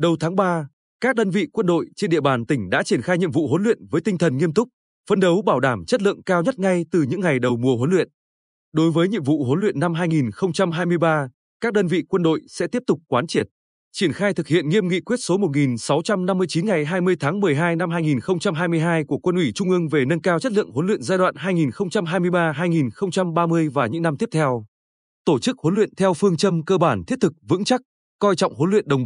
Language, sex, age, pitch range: Vietnamese, male, 20-39, 150-195 Hz